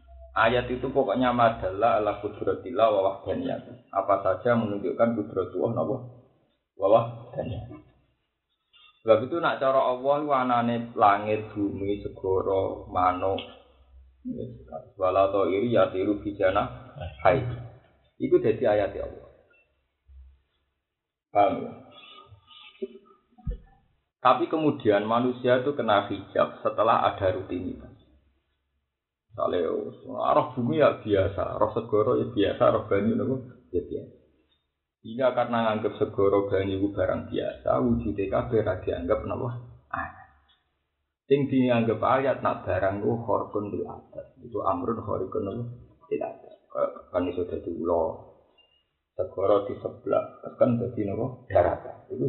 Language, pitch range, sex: Indonesian, 95-130 Hz, male